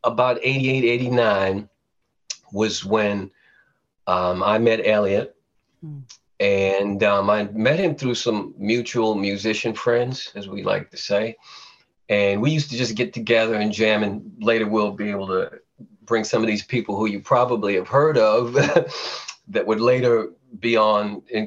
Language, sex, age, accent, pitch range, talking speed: English, male, 40-59, American, 100-120 Hz, 155 wpm